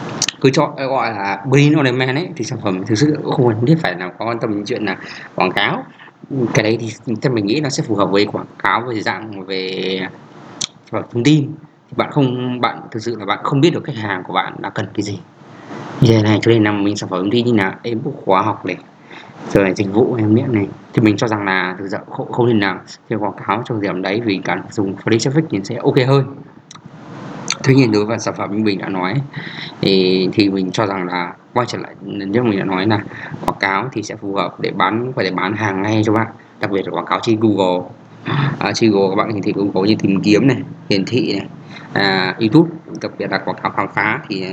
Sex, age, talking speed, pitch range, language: male, 20-39, 240 wpm, 100-140 Hz, Vietnamese